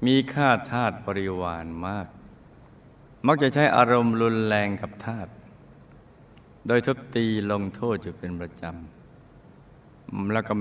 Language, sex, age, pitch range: Thai, male, 60-79, 95-120 Hz